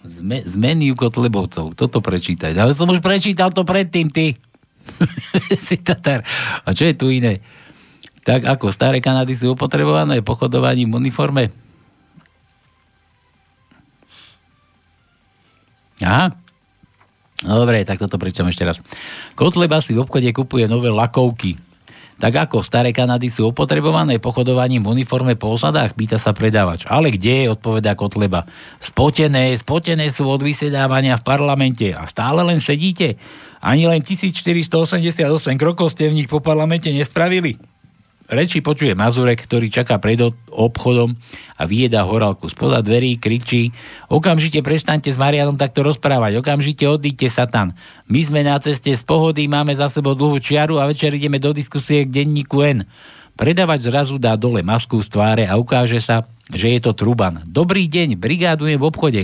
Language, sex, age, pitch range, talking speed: Slovak, male, 60-79, 115-150 Hz, 145 wpm